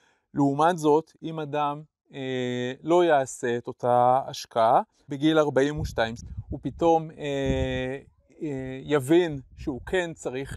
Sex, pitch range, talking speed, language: male, 125-155 Hz, 115 wpm, Hebrew